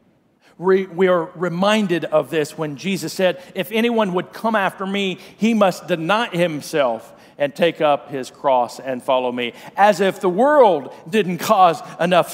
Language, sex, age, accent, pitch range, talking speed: English, male, 50-69, American, 155-200 Hz, 160 wpm